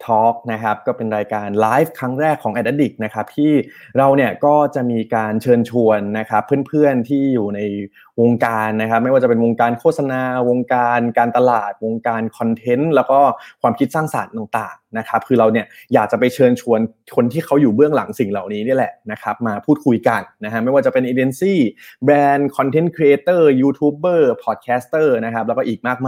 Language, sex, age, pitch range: Thai, male, 20-39, 110-135 Hz